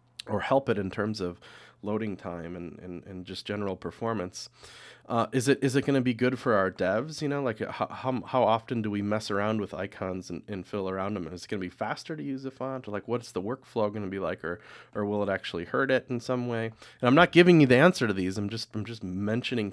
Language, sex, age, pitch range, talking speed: English, male, 30-49, 100-125 Hz, 255 wpm